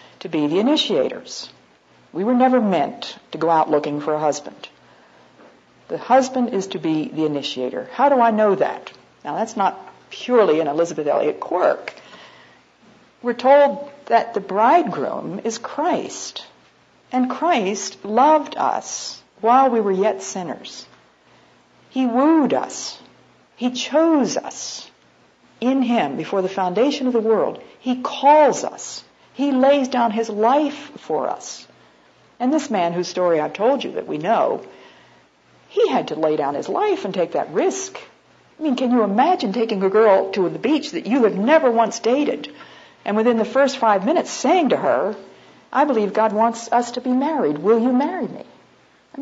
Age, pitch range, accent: 60-79, 205-275 Hz, American